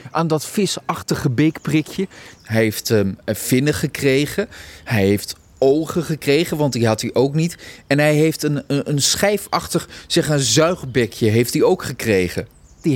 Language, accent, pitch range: Dutch, Dutch, 115-155 Hz